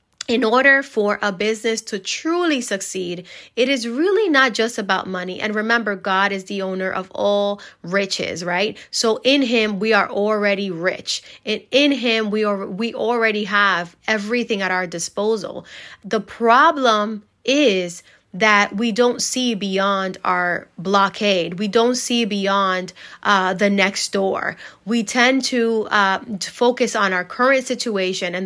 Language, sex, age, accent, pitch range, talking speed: English, female, 20-39, American, 190-230 Hz, 155 wpm